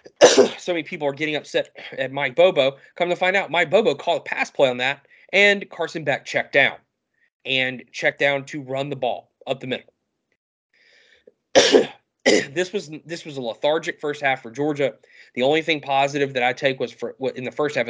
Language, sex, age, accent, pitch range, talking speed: English, male, 20-39, American, 130-165 Hz, 200 wpm